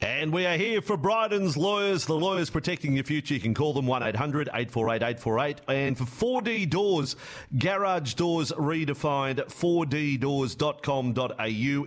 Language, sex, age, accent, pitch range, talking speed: English, male, 40-59, Australian, 125-165 Hz, 125 wpm